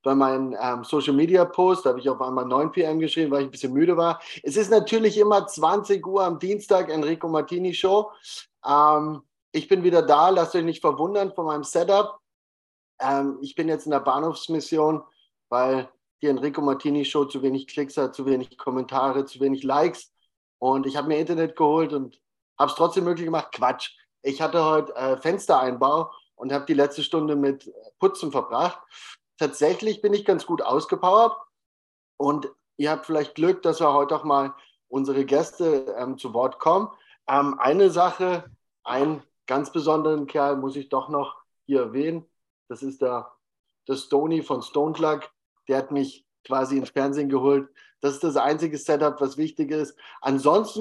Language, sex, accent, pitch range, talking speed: German, male, German, 135-170 Hz, 170 wpm